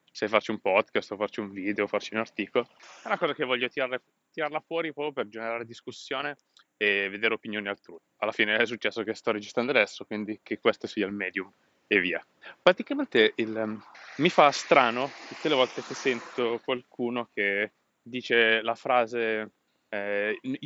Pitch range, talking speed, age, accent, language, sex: 110-140 Hz, 170 wpm, 20-39, native, Italian, male